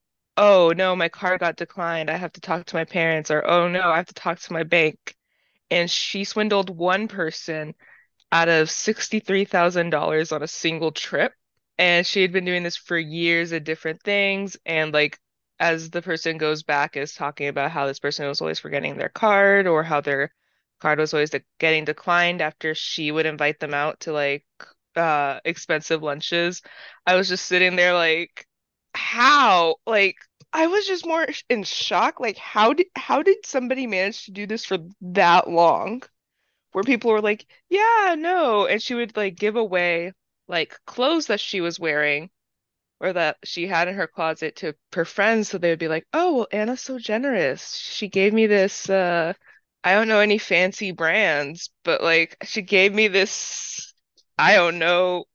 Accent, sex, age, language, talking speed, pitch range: American, female, 20-39, English, 180 wpm, 160-205 Hz